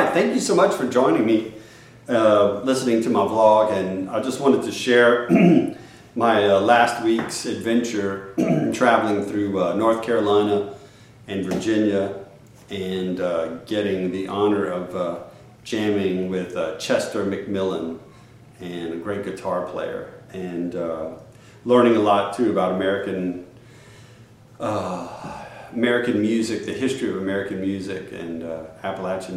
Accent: American